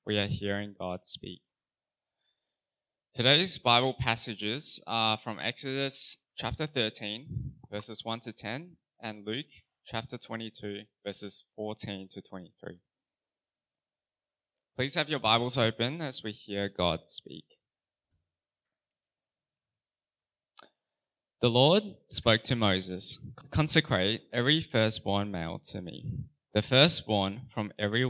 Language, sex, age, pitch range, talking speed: English, male, 20-39, 100-125 Hz, 105 wpm